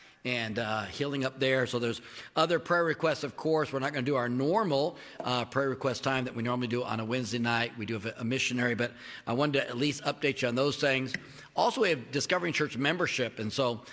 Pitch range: 125-150 Hz